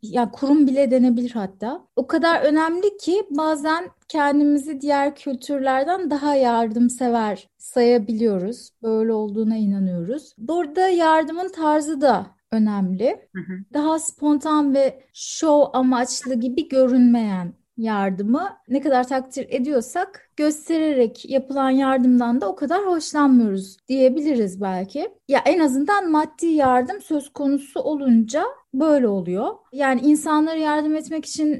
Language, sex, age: Turkish, female, 30-49